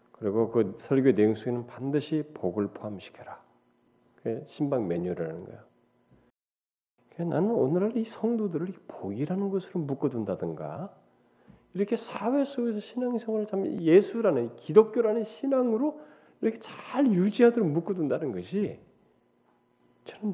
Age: 40-59